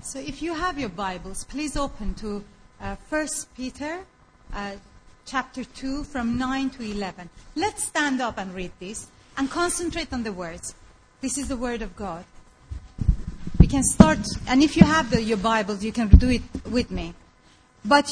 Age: 40-59